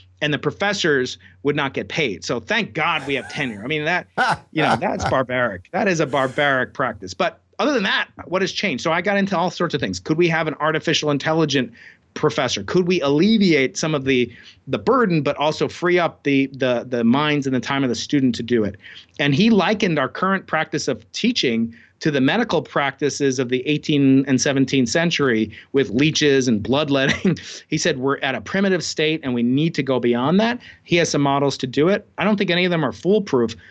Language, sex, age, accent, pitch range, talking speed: English, male, 30-49, American, 130-180 Hz, 220 wpm